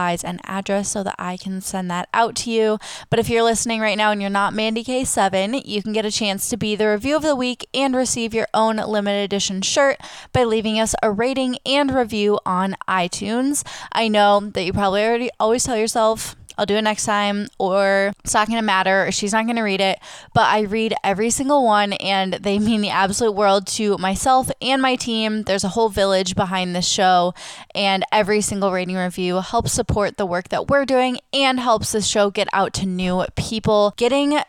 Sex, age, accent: female, 10-29, American